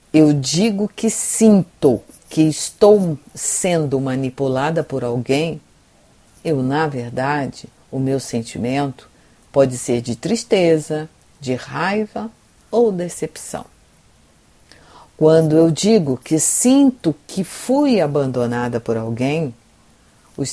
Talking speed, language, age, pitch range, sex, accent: 100 wpm, Portuguese, 50-69, 130-170 Hz, female, Brazilian